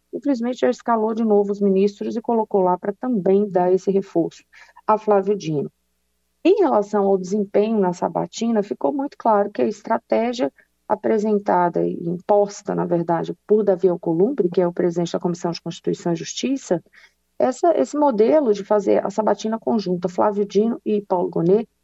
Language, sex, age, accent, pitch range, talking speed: Portuguese, female, 40-59, Brazilian, 185-220 Hz, 165 wpm